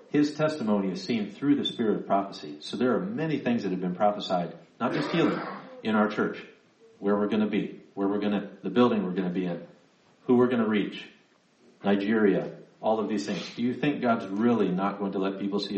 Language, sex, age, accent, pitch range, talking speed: English, male, 40-59, American, 95-125 Hz, 230 wpm